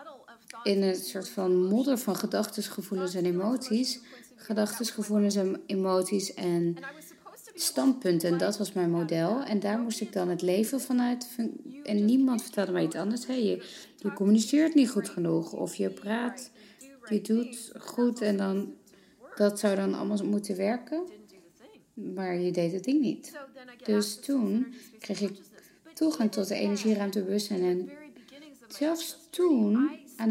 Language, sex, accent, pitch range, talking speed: English, female, Dutch, 190-245 Hz, 150 wpm